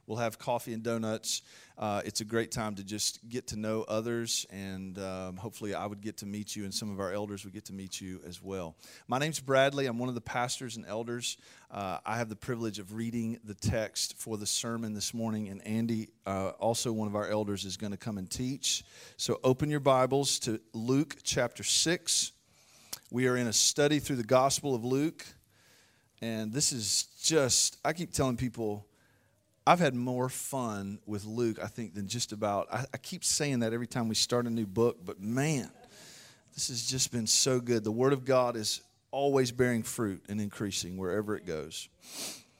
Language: English